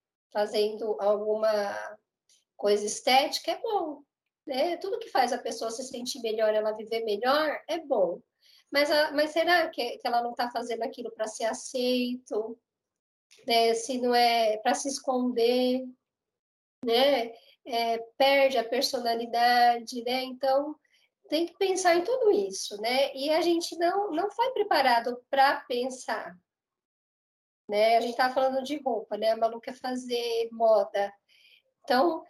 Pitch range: 230-295 Hz